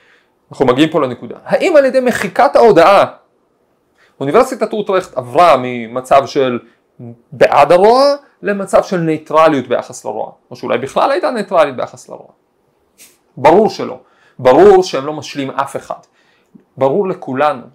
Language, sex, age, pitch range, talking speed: Hebrew, male, 40-59, 135-200 Hz, 130 wpm